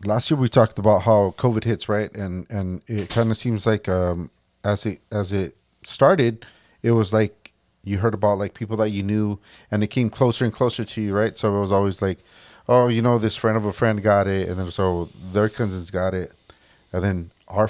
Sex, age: male, 30-49